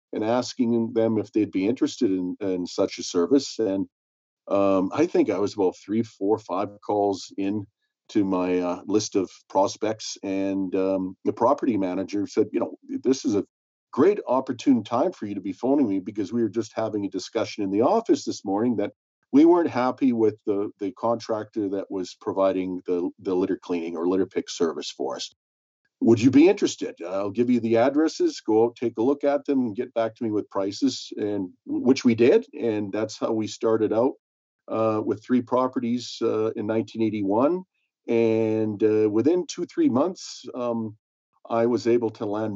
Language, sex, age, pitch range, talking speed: English, male, 50-69, 100-125 Hz, 190 wpm